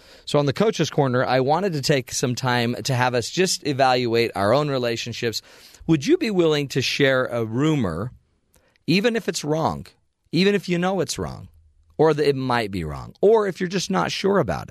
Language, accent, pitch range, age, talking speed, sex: English, American, 110-160 Hz, 40-59, 205 wpm, male